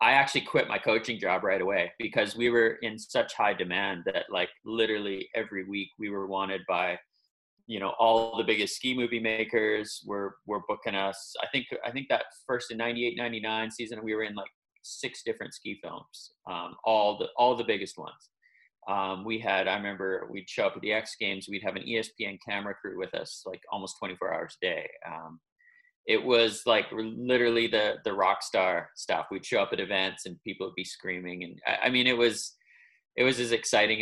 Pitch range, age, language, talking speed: 100-125 Hz, 30-49, English, 205 wpm